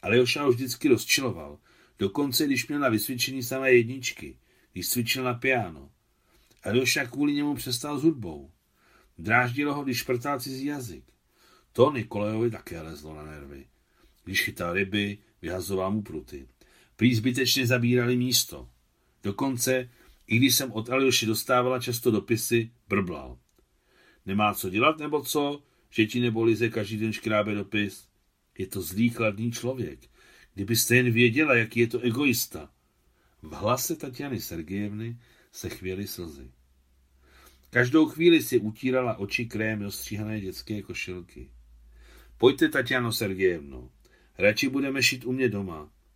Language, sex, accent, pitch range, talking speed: Czech, male, native, 95-125 Hz, 135 wpm